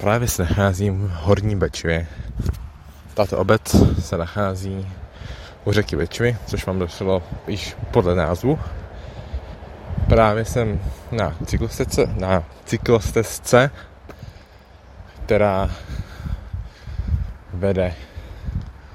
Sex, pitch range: male, 85-110 Hz